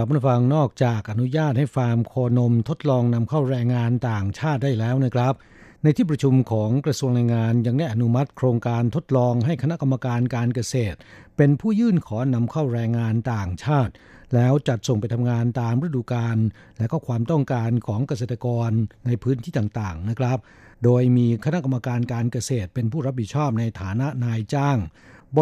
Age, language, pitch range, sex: 60-79, Thai, 115-140 Hz, male